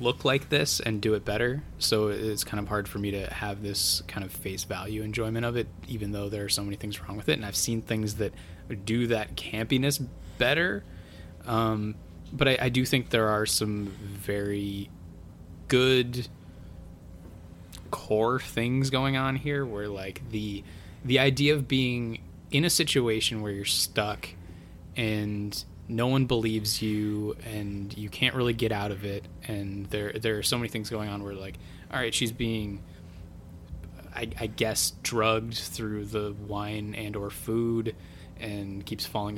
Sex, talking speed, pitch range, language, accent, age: male, 170 wpm, 90-115 Hz, English, American, 20-39